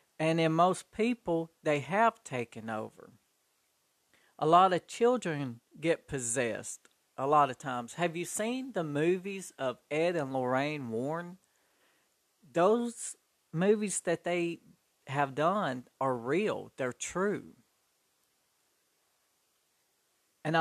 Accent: American